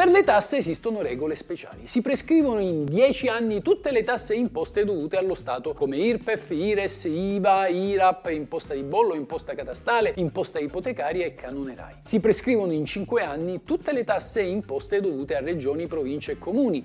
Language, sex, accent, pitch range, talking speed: Italian, male, native, 155-230 Hz, 165 wpm